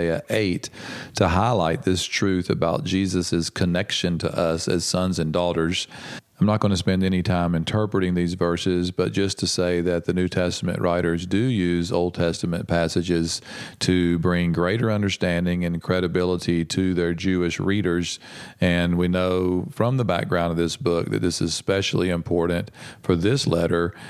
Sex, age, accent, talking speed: male, 40-59, American, 160 wpm